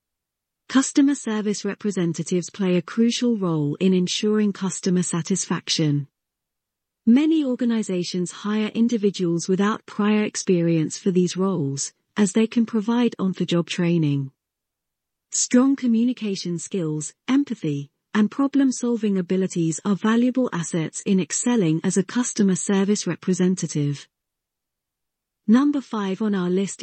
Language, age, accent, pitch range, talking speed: English, 40-59, British, 170-225 Hz, 110 wpm